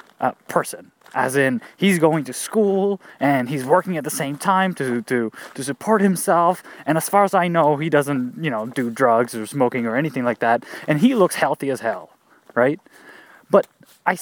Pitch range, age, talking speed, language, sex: 130-200 Hz, 20-39, 200 wpm, English, male